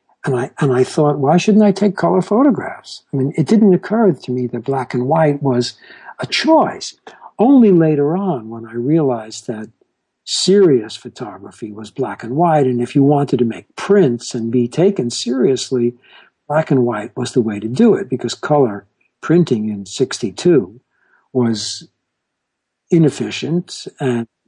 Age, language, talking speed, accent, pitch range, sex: 60-79, English, 160 wpm, American, 125-180 Hz, male